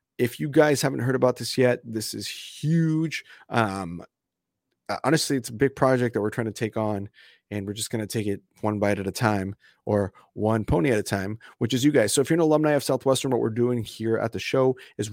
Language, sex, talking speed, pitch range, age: English, male, 240 wpm, 105-125 Hz, 30-49